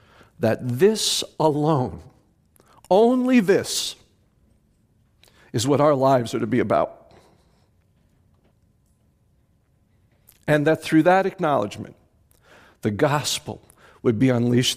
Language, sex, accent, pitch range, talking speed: English, male, American, 95-120 Hz, 95 wpm